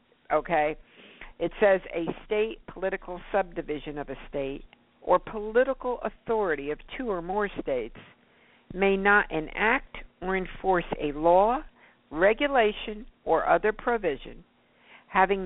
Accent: American